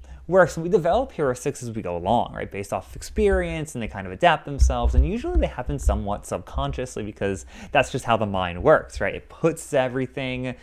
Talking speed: 200 wpm